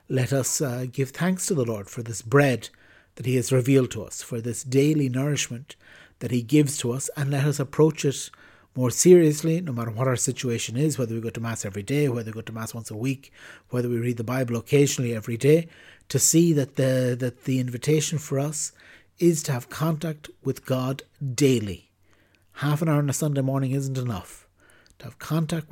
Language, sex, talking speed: English, male, 210 wpm